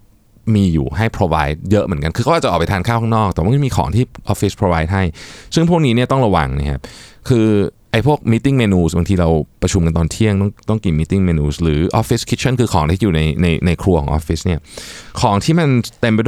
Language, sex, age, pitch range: Thai, male, 20-39, 85-115 Hz